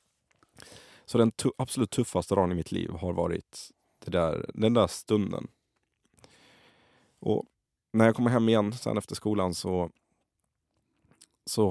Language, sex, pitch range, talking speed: Swedish, male, 85-105 Hz, 140 wpm